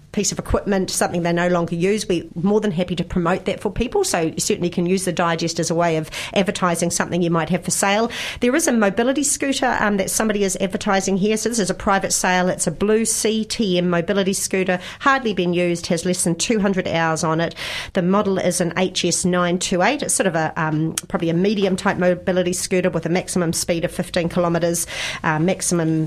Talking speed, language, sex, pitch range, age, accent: 210 wpm, English, female, 170-200 Hz, 40-59, Australian